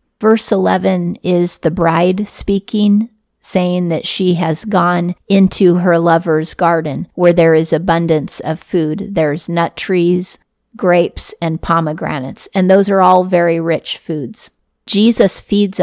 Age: 40-59